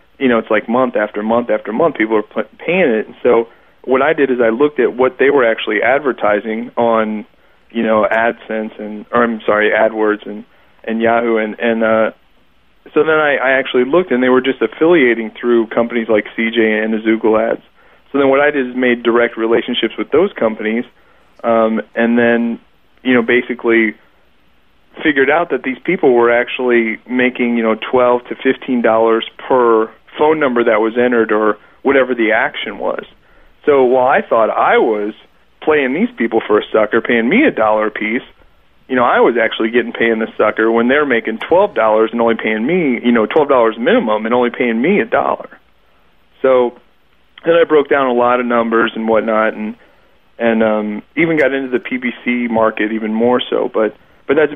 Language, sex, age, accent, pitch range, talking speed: English, male, 40-59, American, 110-125 Hz, 195 wpm